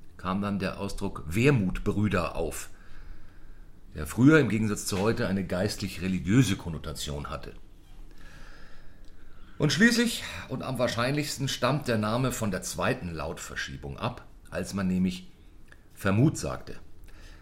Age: 40-59